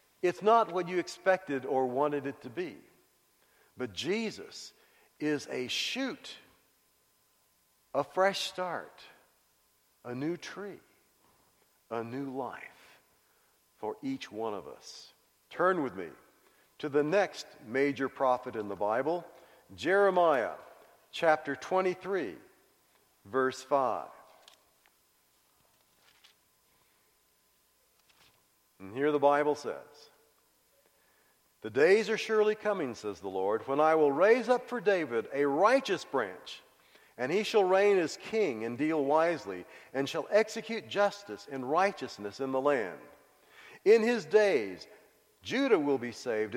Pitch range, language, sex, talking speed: 135-205 Hz, English, male, 120 wpm